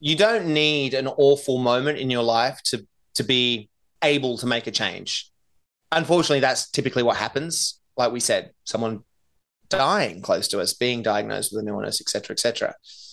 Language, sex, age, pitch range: English, male, 30-49, 115-150 Hz